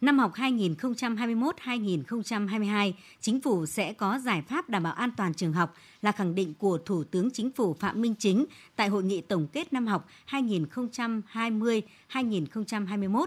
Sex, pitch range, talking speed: male, 185-245 Hz, 155 wpm